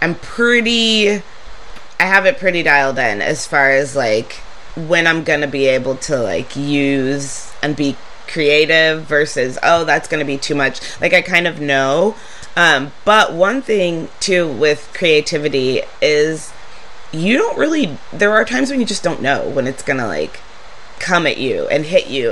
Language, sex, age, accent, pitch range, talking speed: English, female, 30-49, American, 140-180 Hz, 170 wpm